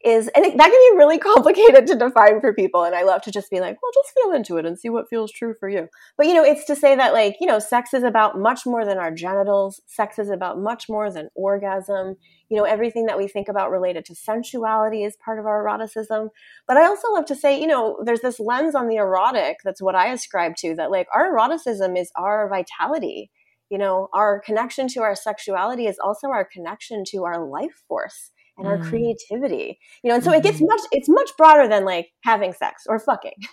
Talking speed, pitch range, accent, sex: 235 wpm, 200-285 Hz, American, female